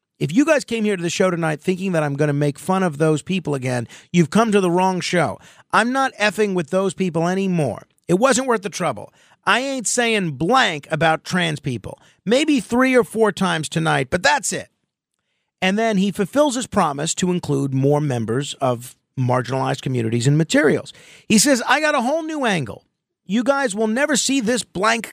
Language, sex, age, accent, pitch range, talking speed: English, male, 50-69, American, 160-230 Hz, 200 wpm